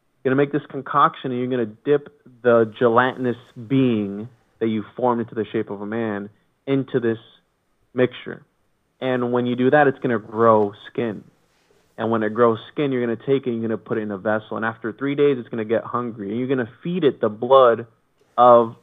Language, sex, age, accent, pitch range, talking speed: English, male, 30-49, American, 110-135 Hz, 235 wpm